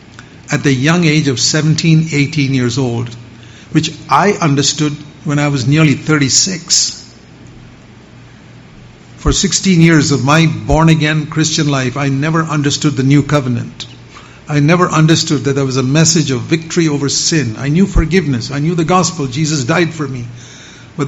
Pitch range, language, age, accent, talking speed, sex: 130-170 Hz, English, 50-69, Indian, 155 wpm, male